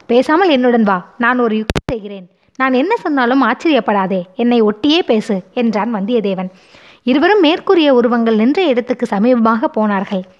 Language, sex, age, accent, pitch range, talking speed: Tamil, female, 20-39, native, 210-290 Hz, 135 wpm